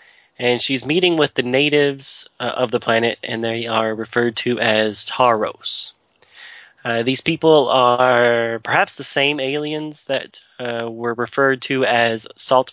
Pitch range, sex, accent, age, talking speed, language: 115-140 Hz, male, American, 30-49, 150 wpm, English